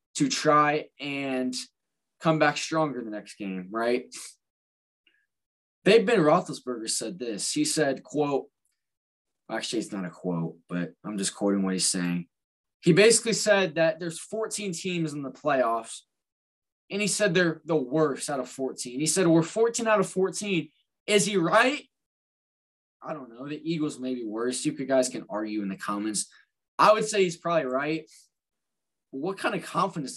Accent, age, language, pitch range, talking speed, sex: American, 20-39, English, 130-195 Hz, 165 wpm, male